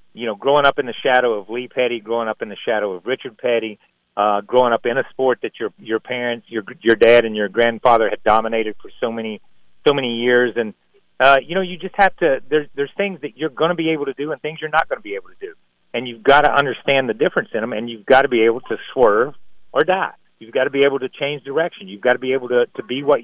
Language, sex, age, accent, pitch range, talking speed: English, male, 40-59, American, 115-140 Hz, 275 wpm